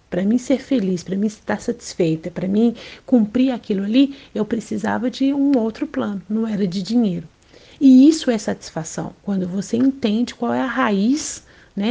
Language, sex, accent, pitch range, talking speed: Portuguese, female, Brazilian, 195-265 Hz, 175 wpm